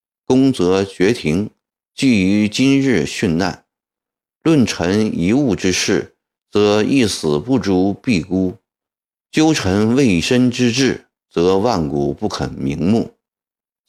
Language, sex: Chinese, male